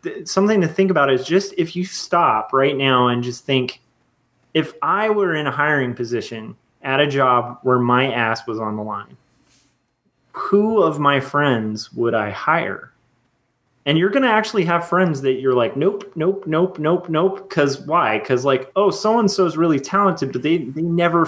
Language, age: English, 30-49